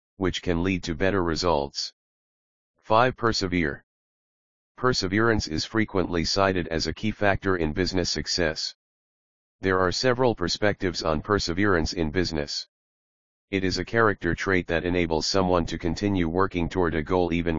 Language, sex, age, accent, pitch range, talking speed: English, male, 40-59, American, 85-95 Hz, 145 wpm